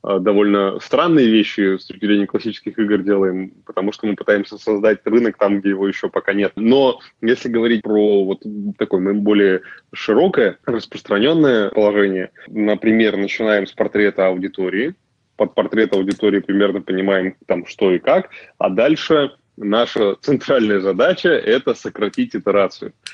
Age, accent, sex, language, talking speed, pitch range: 20-39, native, male, Russian, 135 wpm, 100-120 Hz